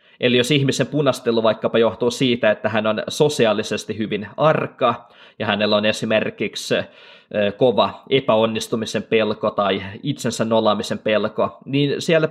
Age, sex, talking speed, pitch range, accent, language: 20-39, male, 125 wpm, 115-175 Hz, native, Finnish